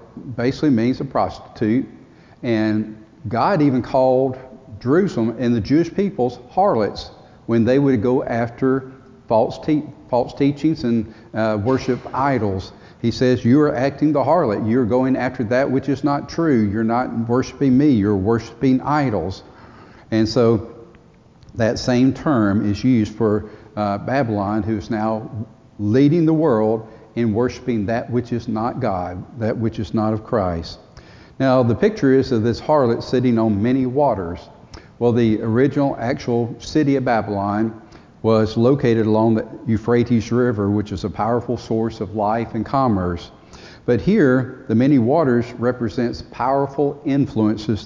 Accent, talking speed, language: American, 145 wpm, English